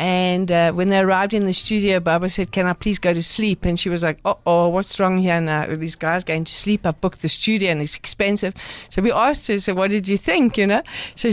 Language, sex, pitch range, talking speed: English, female, 170-195 Hz, 265 wpm